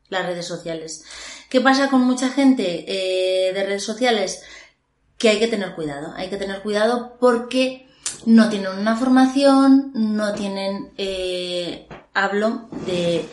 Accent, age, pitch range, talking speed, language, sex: Spanish, 20-39, 185-235 Hz, 140 wpm, Spanish, female